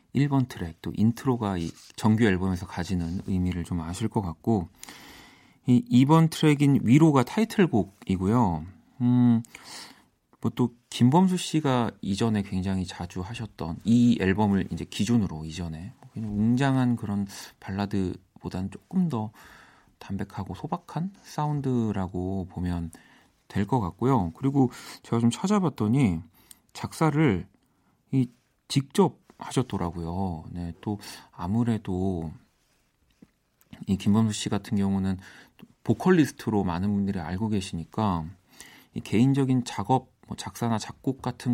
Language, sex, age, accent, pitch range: Korean, male, 40-59, native, 95-125 Hz